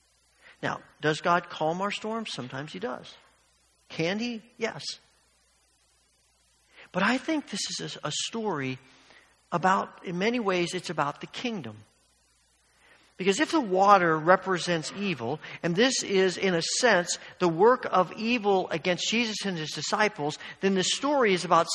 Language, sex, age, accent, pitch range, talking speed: English, male, 50-69, American, 165-220 Hz, 145 wpm